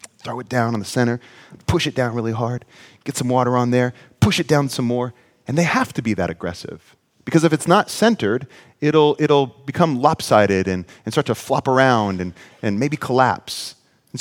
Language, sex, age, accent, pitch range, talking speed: English, male, 30-49, American, 115-150 Hz, 205 wpm